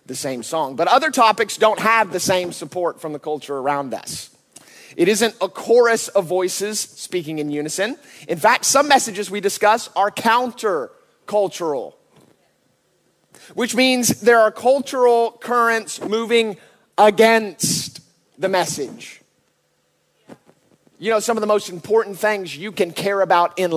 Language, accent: English, American